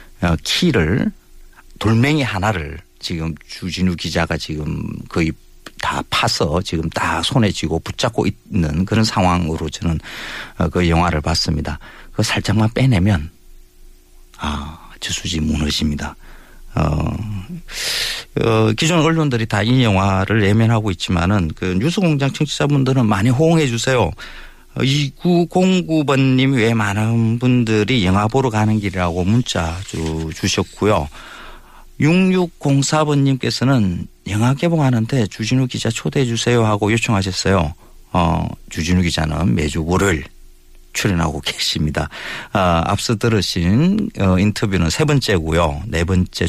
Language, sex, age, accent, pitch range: Korean, male, 40-59, native, 85-125 Hz